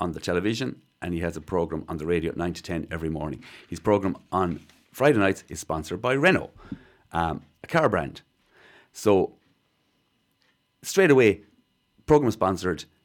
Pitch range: 90-130 Hz